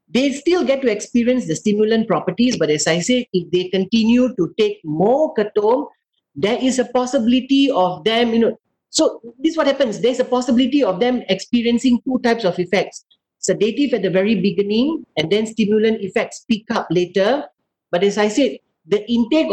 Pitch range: 195-250 Hz